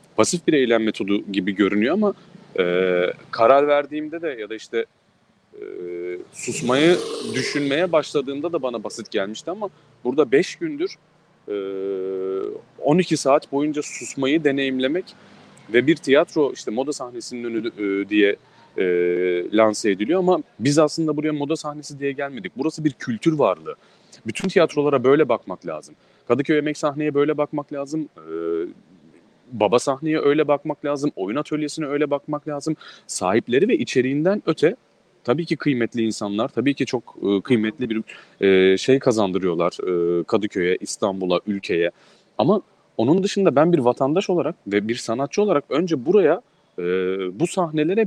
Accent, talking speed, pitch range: Turkish, 140 wpm, 110-165 Hz